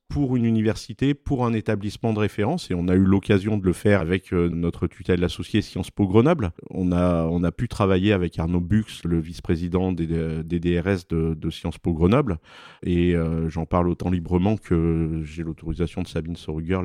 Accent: French